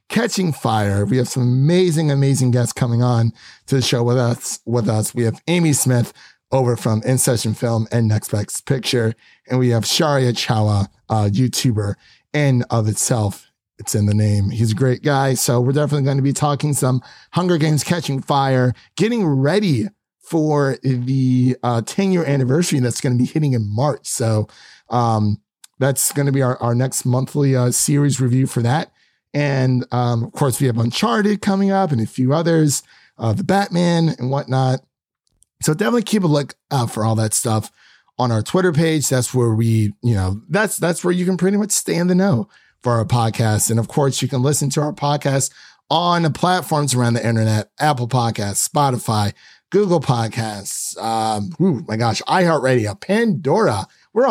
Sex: male